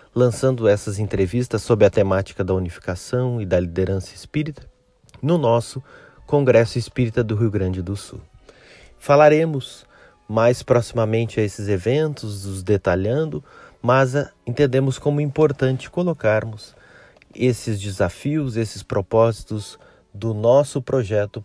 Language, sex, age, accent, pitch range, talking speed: Portuguese, male, 30-49, Brazilian, 105-135 Hz, 115 wpm